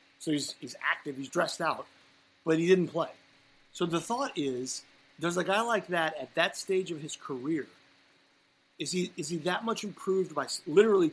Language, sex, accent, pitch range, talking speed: English, male, American, 145-180 Hz, 190 wpm